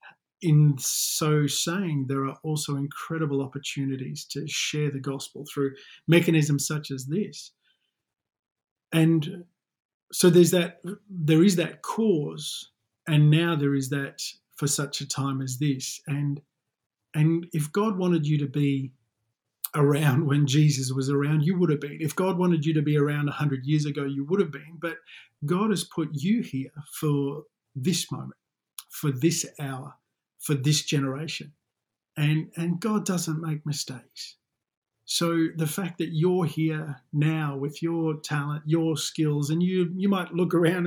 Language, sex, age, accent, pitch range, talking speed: English, male, 50-69, Australian, 140-170 Hz, 155 wpm